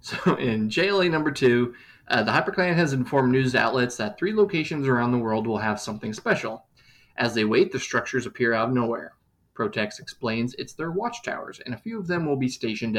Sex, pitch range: male, 115-150 Hz